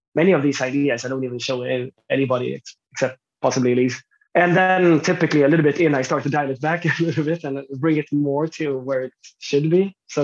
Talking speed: 225 wpm